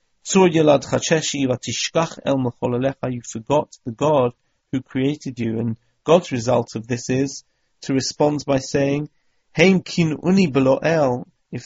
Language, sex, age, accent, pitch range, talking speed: English, male, 40-59, British, 120-150 Hz, 95 wpm